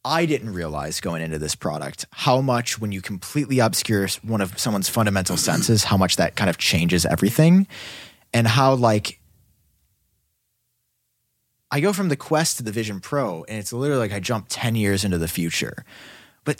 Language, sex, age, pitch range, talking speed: English, male, 20-39, 110-180 Hz, 175 wpm